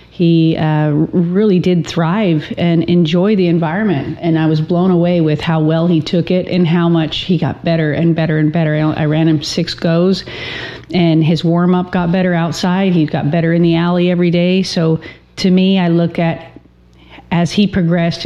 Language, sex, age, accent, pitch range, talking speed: English, female, 40-59, American, 160-185 Hz, 195 wpm